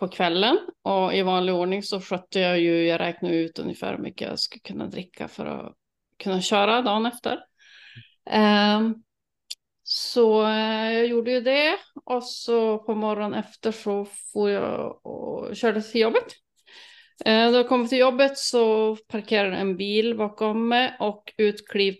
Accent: native